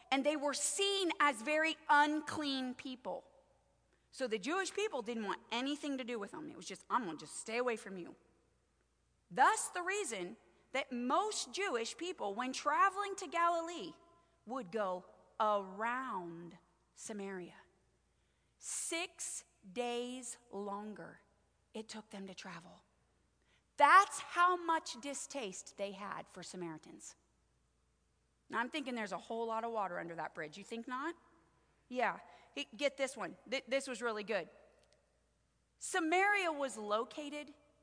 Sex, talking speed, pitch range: female, 140 wpm, 205-330 Hz